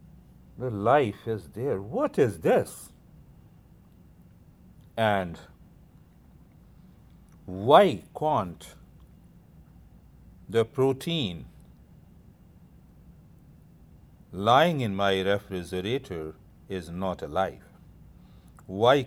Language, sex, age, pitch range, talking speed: English, male, 60-79, 95-125 Hz, 65 wpm